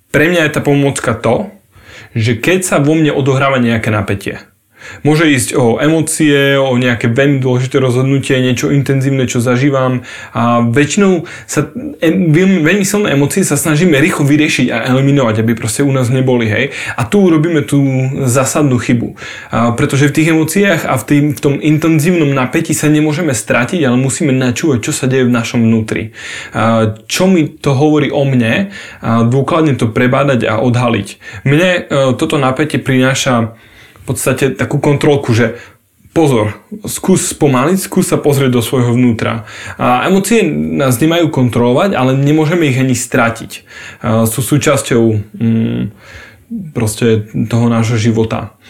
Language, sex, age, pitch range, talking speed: English, male, 20-39, 115-150 Hz, 150 wpm